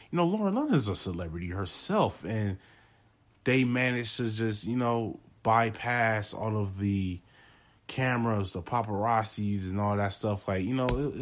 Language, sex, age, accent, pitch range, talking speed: English, male, 20-39, American, 100-115 Hz, 160 wpm